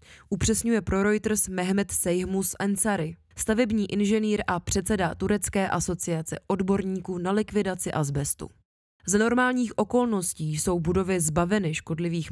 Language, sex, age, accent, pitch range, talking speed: Czech, female, 20-39, native, 170-215 Hz, 110 wpm